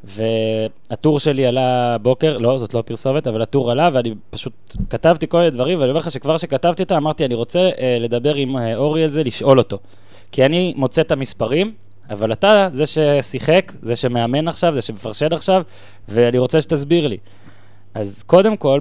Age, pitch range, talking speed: 20-39, 110-150 Hz, 170 wpm